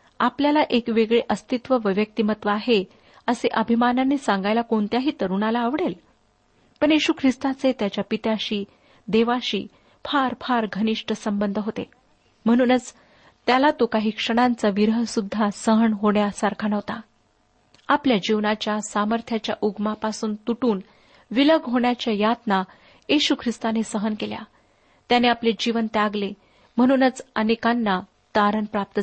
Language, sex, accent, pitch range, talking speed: Marathi, female, native, 210-250 Hz, 110 wpm